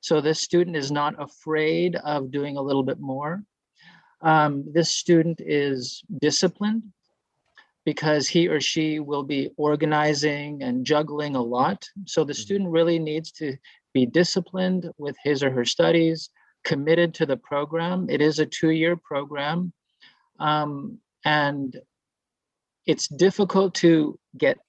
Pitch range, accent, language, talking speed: 145-180 Hz, American, French, 135 wpm